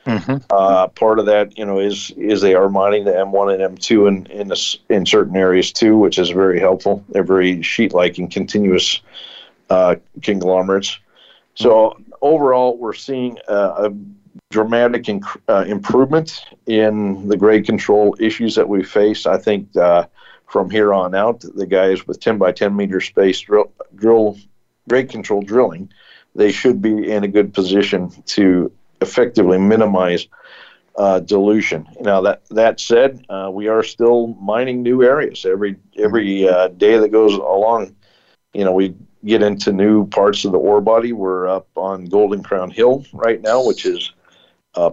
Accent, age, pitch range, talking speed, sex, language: American, 50-69, 95-110 Hz, 165 wpm, male, English